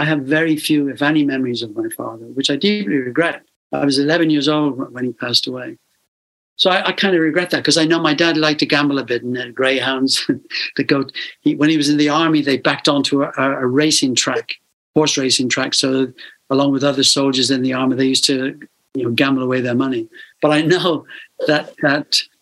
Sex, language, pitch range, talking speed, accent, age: male, English, 135-155 Hz, 225 wpm, British, 60-79